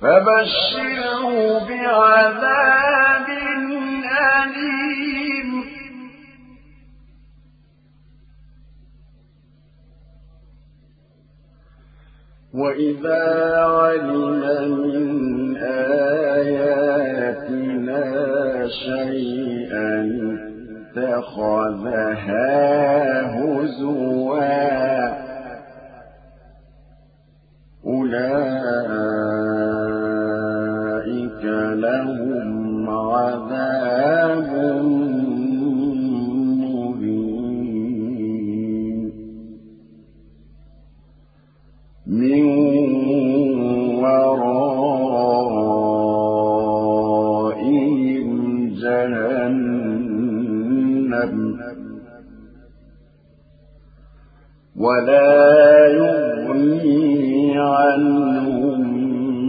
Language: Arabic